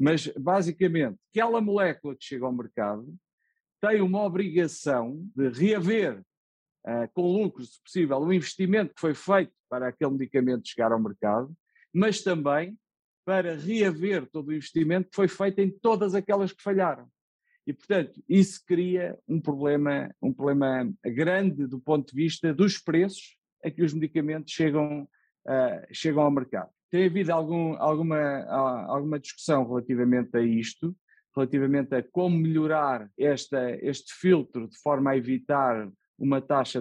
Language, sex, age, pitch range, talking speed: Portuguese, male, 50-69, 130-180 Hz, 140 wpm